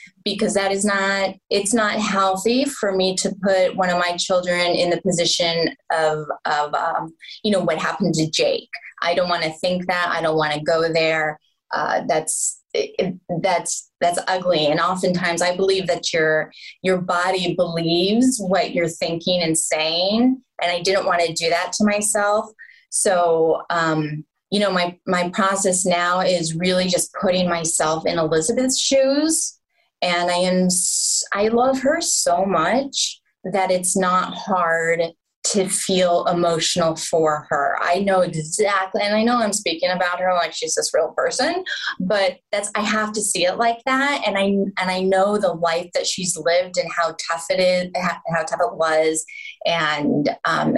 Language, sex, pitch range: English, female, 170-205 Hz